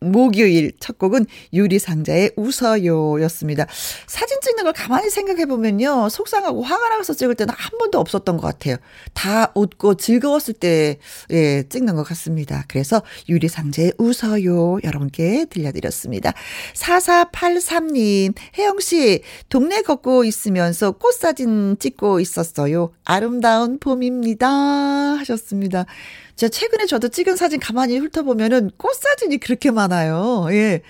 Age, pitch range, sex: 40-59, 180-280 Hz, female